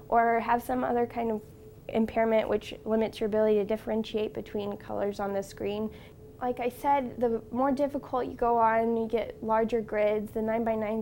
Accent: American